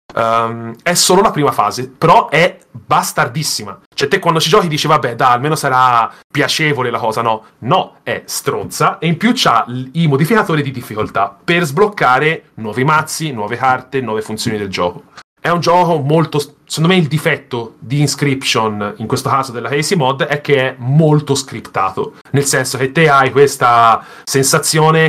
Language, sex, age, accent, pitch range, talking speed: Italian, male, 30-49, native, 125-155 Hz, 165 wpm